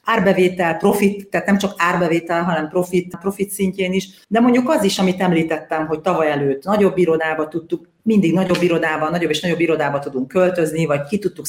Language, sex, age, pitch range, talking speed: Hungarian, female, 40-59, 150-185 Hz, 185 wpm